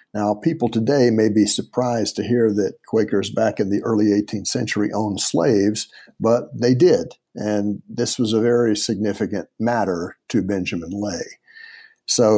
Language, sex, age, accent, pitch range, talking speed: English, male, 60-79, American, 105-140 Hz, 155 wpm